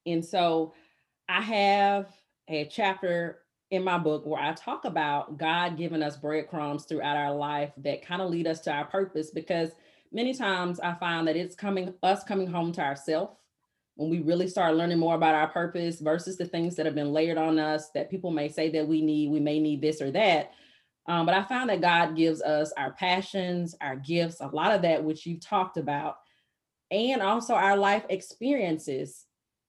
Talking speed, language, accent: 195 wpm, English, American